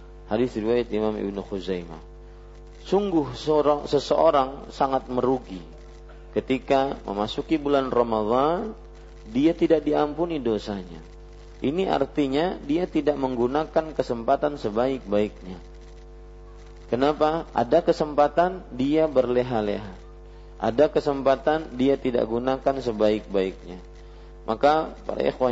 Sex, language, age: male, Malay, 40-59